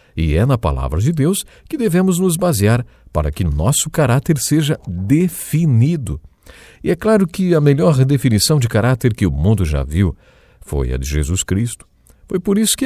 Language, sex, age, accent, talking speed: English, male, 50-69, Brazilian, 180 wpm